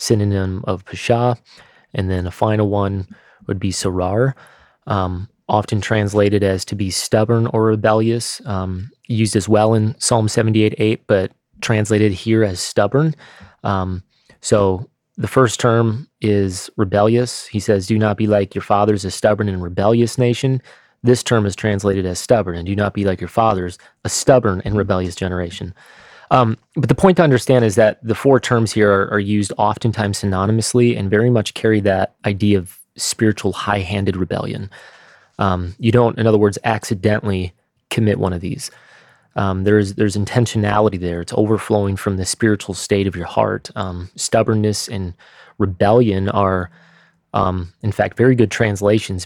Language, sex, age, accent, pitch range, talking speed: English, male, 20-39, American, 95-115 Hz, 165 wpm